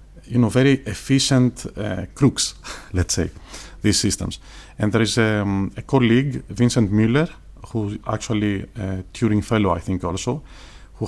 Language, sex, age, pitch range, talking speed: Greek, male, 40-59, 95-125 Hz, 145 wpm